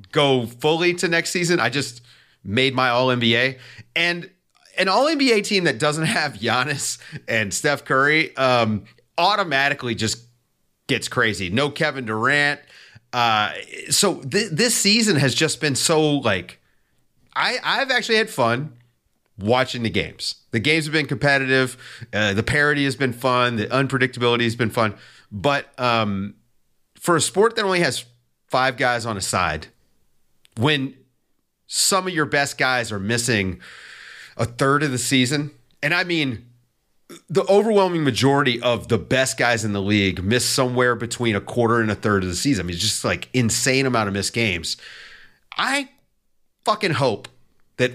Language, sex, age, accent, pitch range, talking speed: English, male, 30-49, American, 115-150 Hz, 160 wpm